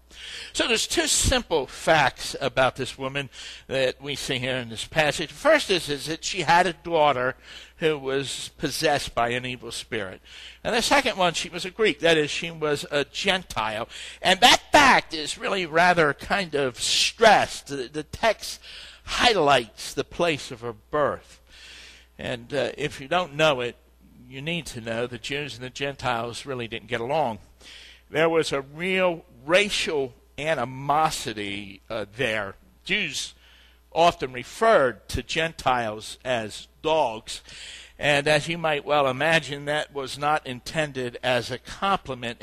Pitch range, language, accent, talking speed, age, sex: 125-160 Hz, English, American, 155 wpm, 60-79, male